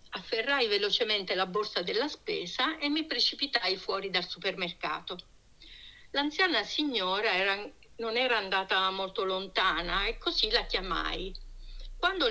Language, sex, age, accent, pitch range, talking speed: Italian, female, 60-79, native, 190-290 Hz, 115 wpm